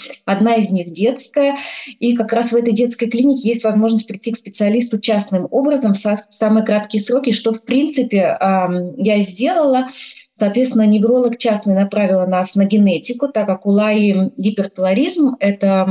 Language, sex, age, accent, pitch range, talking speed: Russian, female, 20-39, native, 195-235 Hz, 160 wpm